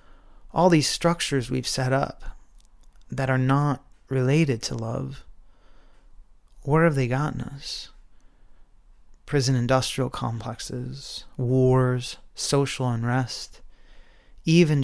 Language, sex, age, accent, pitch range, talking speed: English, male, 30-49, American, 120-135 Hz, 95 wpm